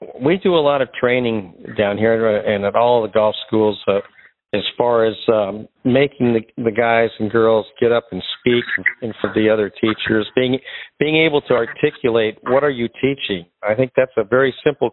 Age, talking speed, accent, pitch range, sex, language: 50-69, 195 wpm, American, 110-125 Hz, male, English